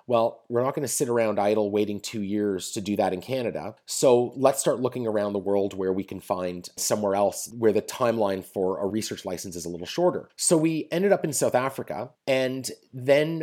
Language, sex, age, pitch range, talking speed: English, male, 30-49, 105-130 Hz, 220 wpm